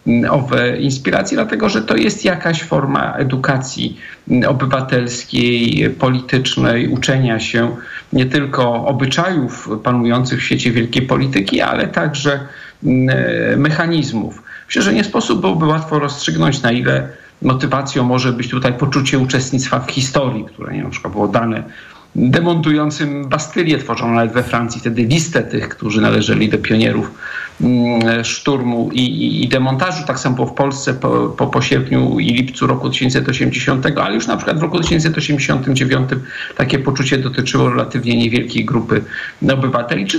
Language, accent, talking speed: Polish, native, 135 wpm